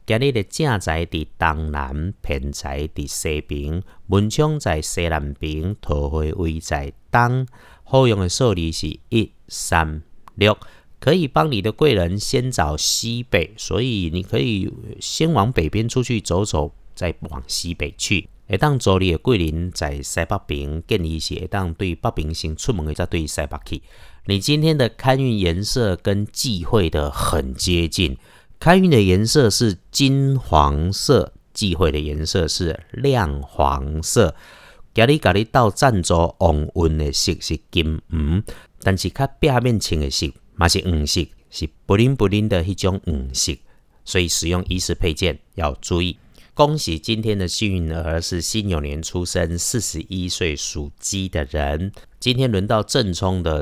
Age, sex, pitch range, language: 50-69, male, 80-105 Hz, Chinese